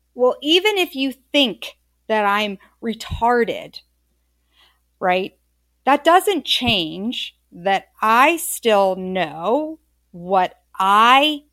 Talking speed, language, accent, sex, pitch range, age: 95 wpm, English, American, female, 195-270 Hz, 50-69